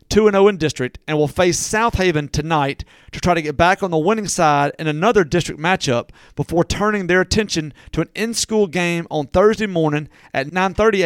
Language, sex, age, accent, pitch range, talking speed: English, male, 40-59, American, 155-195 Hz, 190 wpm